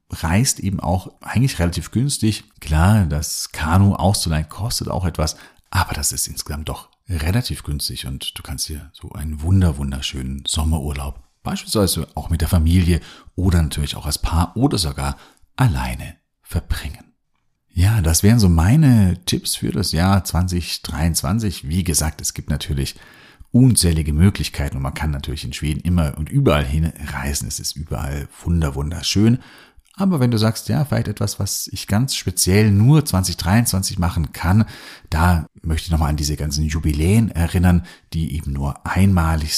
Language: German